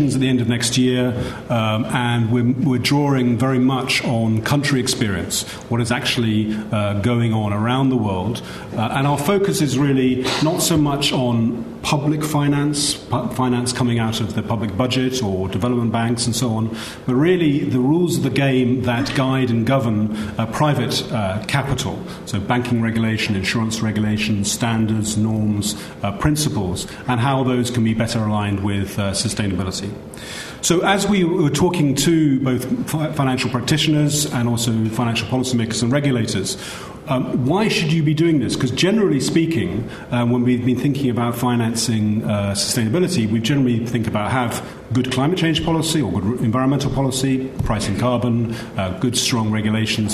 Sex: male